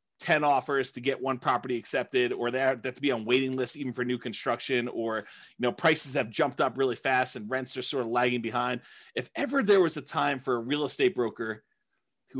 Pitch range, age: 130-200 Hz, 30-49